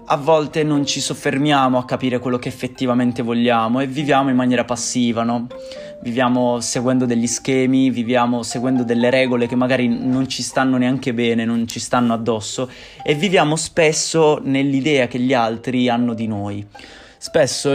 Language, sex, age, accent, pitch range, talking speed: Indonesian, male, 20-39, Italian, 115-130 Hz, 160 wpm